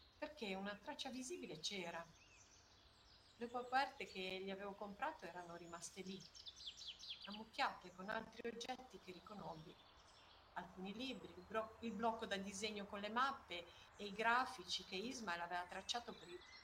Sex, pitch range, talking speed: female, 175-235 Hz, 140 wpm